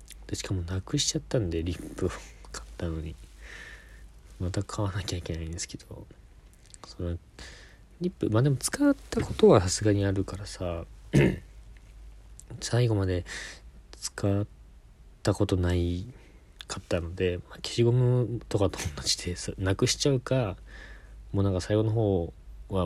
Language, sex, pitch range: Japanese, male, 80-100 Hz